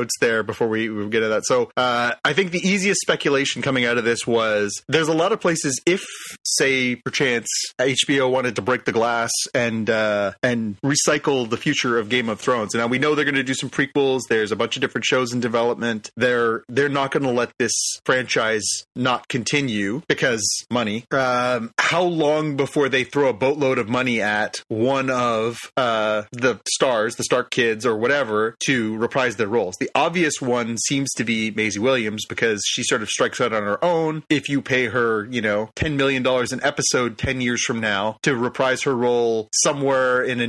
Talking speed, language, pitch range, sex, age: 200 wpm, English, 110-135 Hz, male, 30-49